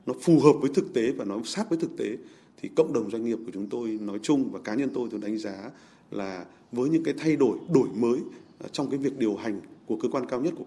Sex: male